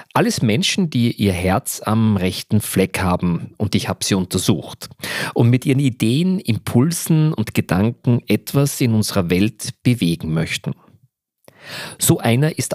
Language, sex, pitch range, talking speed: German, male, 100-125 Hz, 140 wpm